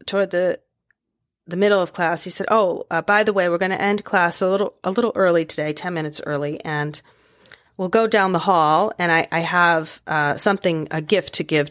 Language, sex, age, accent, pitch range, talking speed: English, female, 30-49, American, 150-185 Hz, 220 wpm